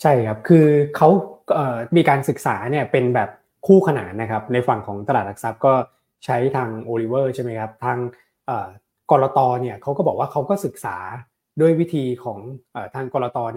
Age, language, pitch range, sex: 20-39, Thai, 120-145 Hz, male